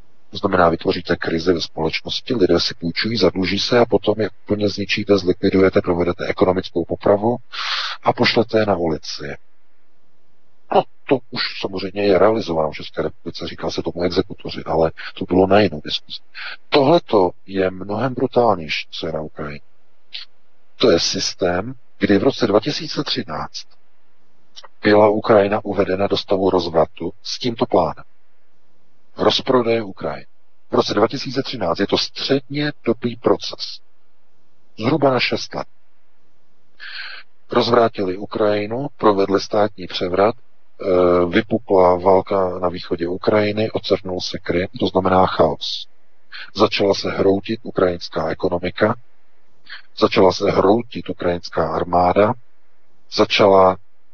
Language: Czech